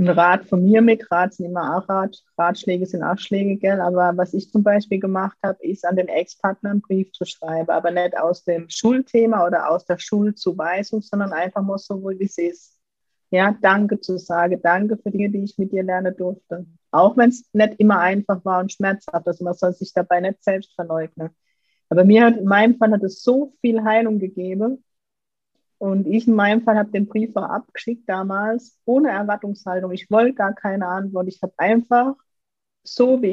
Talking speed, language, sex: 200 wpm, German, female